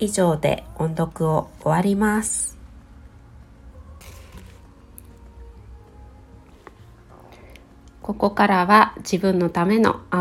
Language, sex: Japanese, female